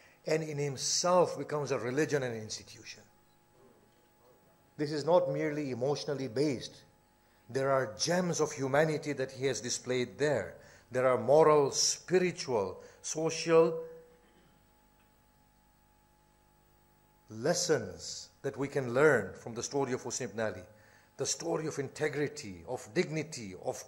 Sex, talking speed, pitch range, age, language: male, 125 wpm, 140-180 Hz, 50-69, English